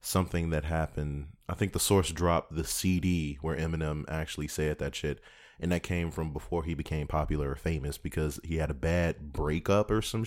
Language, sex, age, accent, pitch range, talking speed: English, male, 20-39, American, 75-95 Hz, 200 wpm